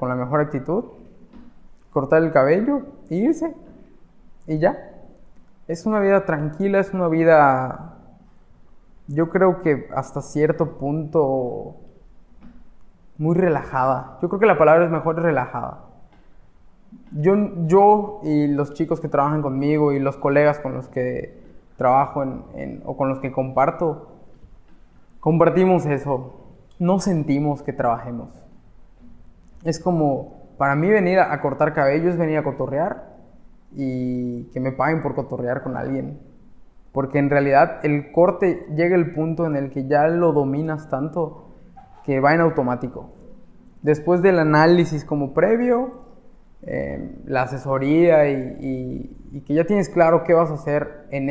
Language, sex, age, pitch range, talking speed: Spanish, male, 20-39, 140-180 Hz, 140 wpm